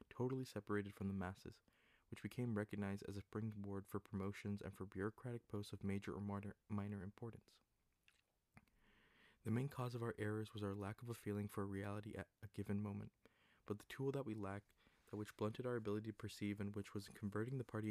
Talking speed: 200 wpm